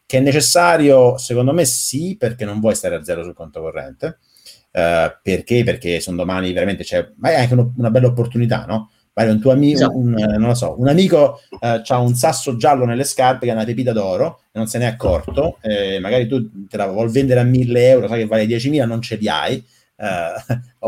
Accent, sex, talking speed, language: native, male, 225 wpm, Italian